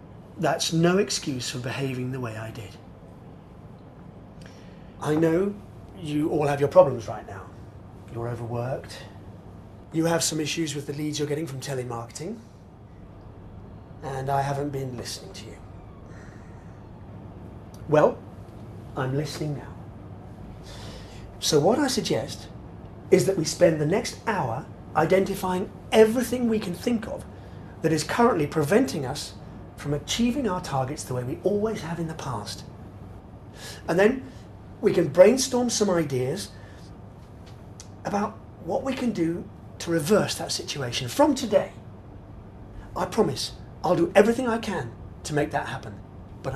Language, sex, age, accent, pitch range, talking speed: English, male, 30-49, British, 100-170 Hz, 135 wpm